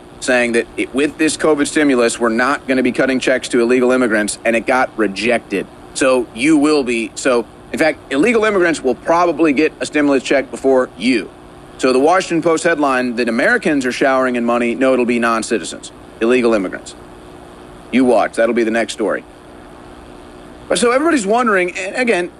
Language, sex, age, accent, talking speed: English, male, 30-49, American, 175 wpm